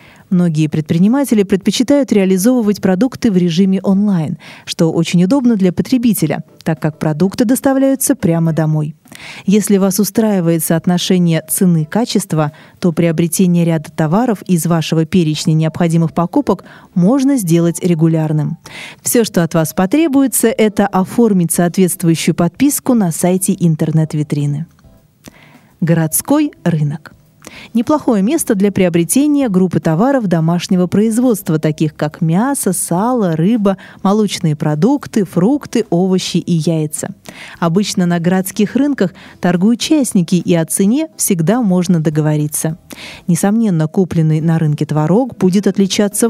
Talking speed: 115 wpm